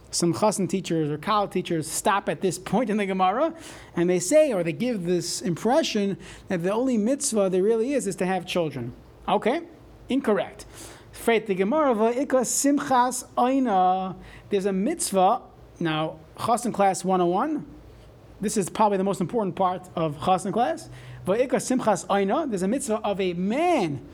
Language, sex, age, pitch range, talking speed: English, male, 30-49, 170-225 Hz, 140 wpm